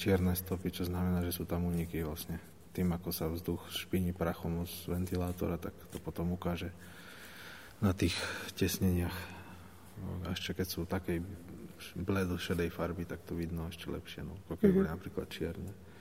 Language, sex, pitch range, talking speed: Slovak, male, 85-95 Hz, 155 wpm